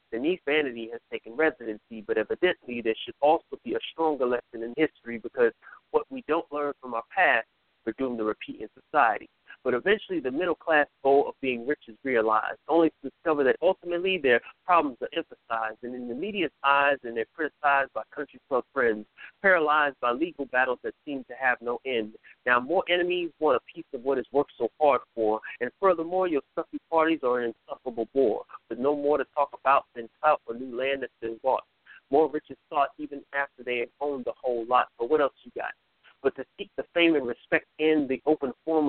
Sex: male